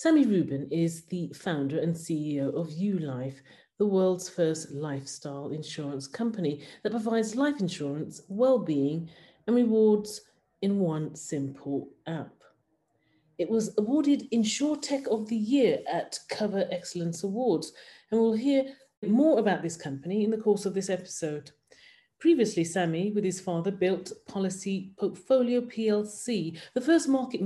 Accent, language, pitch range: British, English, 165-215 Hz